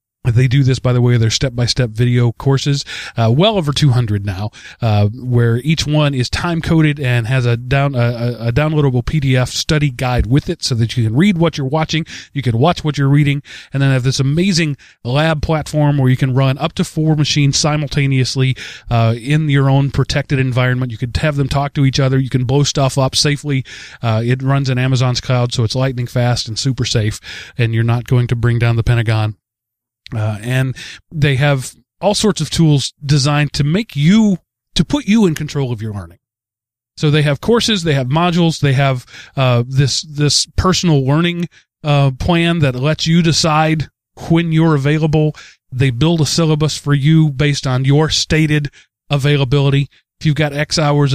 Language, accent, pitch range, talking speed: English, American, 125-150 Hz, 190 wpm